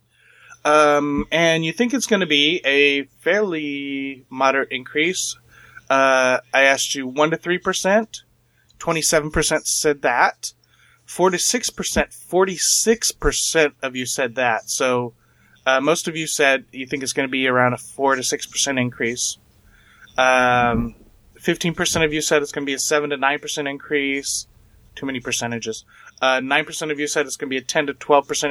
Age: 30-49